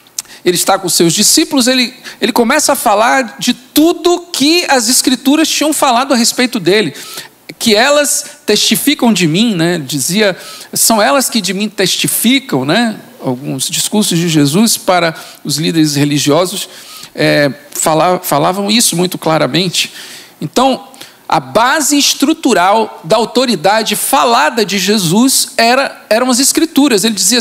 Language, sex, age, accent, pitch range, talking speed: Portuguese, male, 50-69, Brazilian, 170-255 Hz, 135 wpm